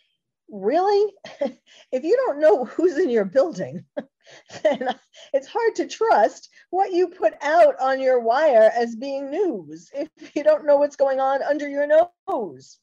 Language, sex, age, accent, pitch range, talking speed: English, female, 50-69, American, 195-285 Hz, 160 wpm